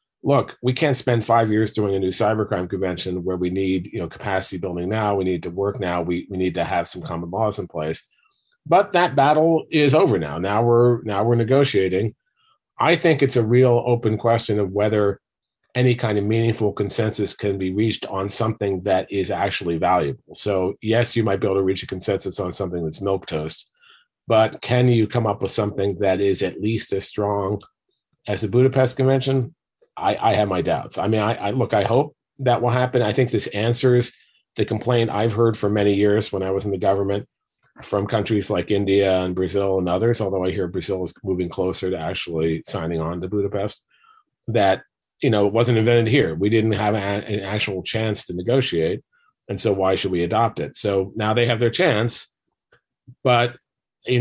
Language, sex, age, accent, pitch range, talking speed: English, male, 40-59, American, 95-120 Hz, 205 wpm